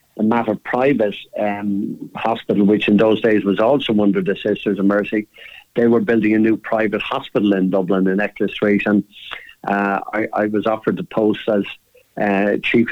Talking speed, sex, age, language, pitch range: 170 wpm, male, 50-69, English, 100-115 Hz